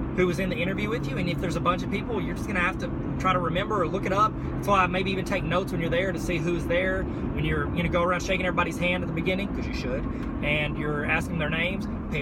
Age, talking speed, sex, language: 20-39, 295 wpm, male, English